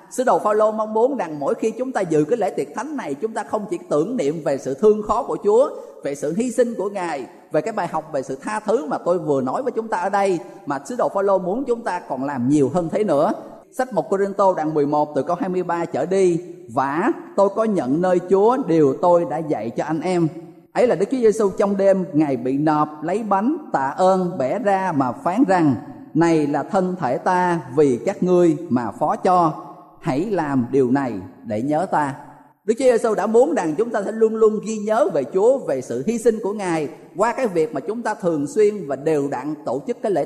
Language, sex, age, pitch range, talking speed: Vietnamese, male, 20-39, 155-220 Hz, 240 wpm